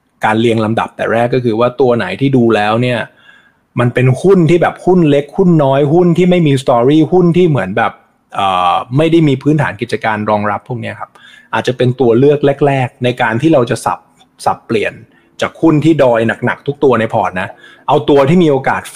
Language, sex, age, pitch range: Thai, male, 20-39, 115-150 Hz